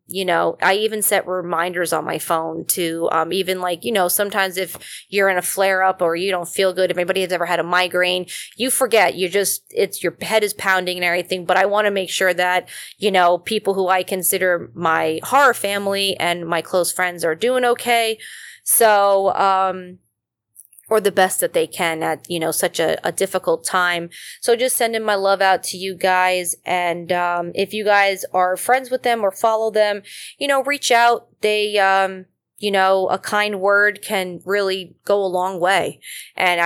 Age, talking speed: 20-39, 200 wpm